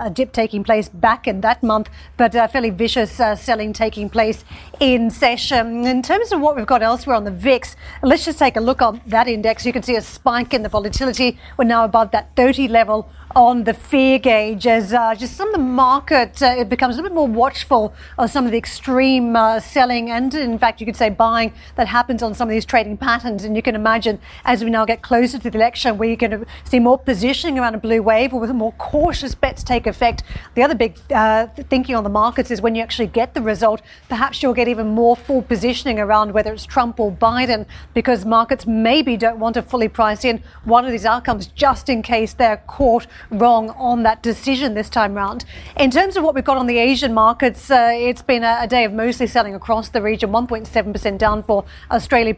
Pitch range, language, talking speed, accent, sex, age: 225-250 Hz, English, 230 wpm, Australian, female, 40-59